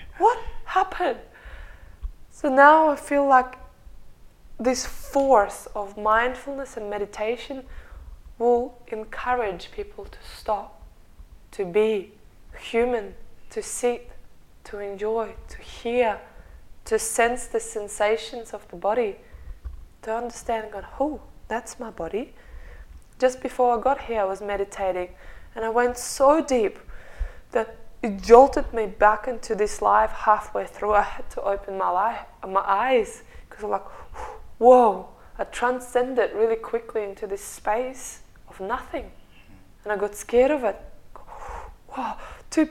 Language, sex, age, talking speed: English, female, 20-39, 130 wpm